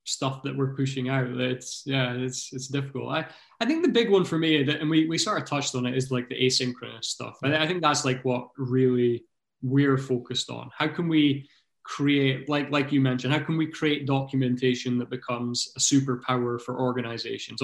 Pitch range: 130-145 Hz